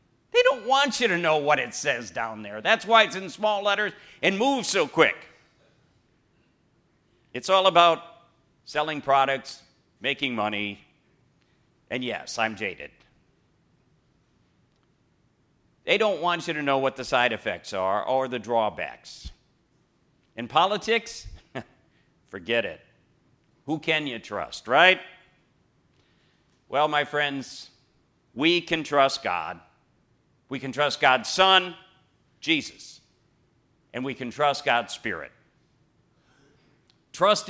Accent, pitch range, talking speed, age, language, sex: American, 125-175 Hz, 120 wpm, 50-69, English, male